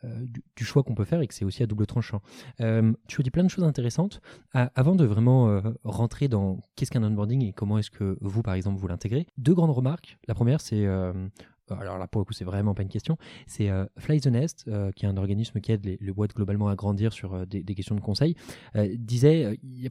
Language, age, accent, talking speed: French, 20-39, French, 270 wpm